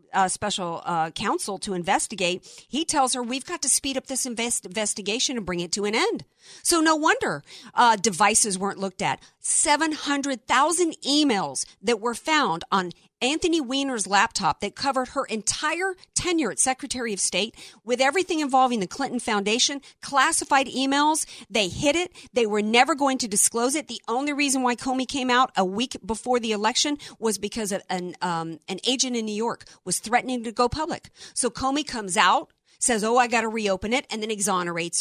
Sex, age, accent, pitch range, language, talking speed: female, 50-69, American, 200-275 Hz, English, 185 wpm